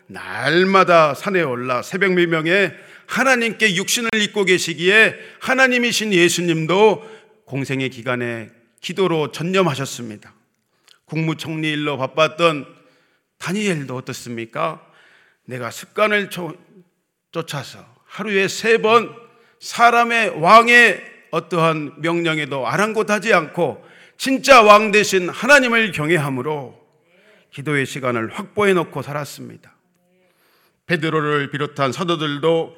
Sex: male